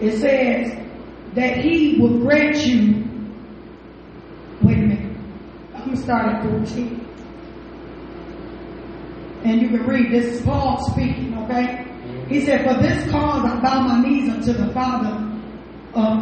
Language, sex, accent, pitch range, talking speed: English, female, American, 220-305 Hz, 140 wpm